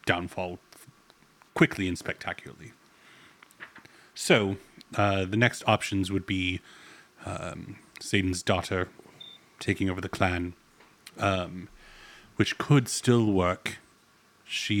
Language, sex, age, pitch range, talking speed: English, male, 30-49, 95-110 Hz, 95 wpm